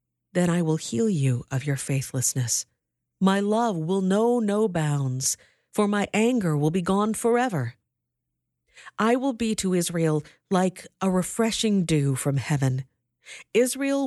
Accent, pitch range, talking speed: American, 145-215 Hz, 140 wpm